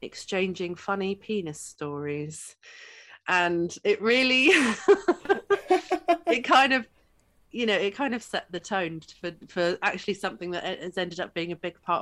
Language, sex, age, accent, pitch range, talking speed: English, female, 30-49, British, 160-200 Hz, 150 wpm